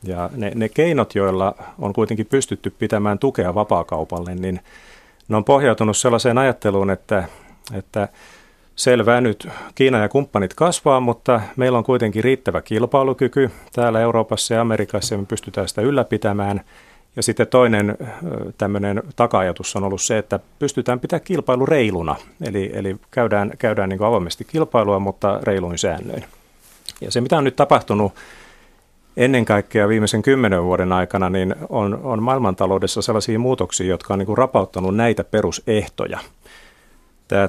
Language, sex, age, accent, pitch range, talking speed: Finnish, male, 40-59, native, 95-115 Hz, 140 wpm